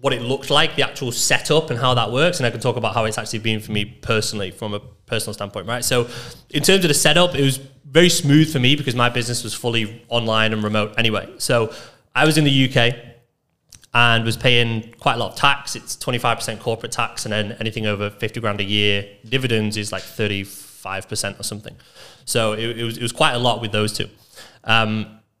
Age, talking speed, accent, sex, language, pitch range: 20-39, 220 wpm, British, male, English, 110-130 Hz